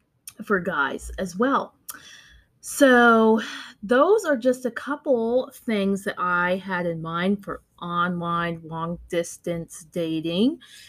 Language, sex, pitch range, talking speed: English, female, 180-240 Hz, 115 wpm